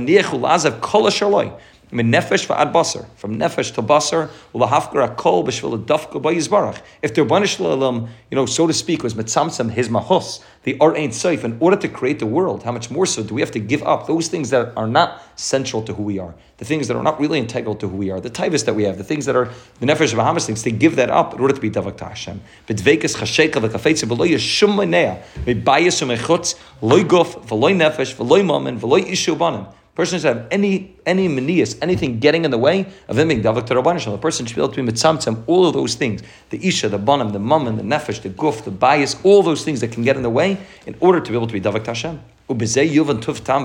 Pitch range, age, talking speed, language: 110-155 Hz, 30-49, 180 wpm, English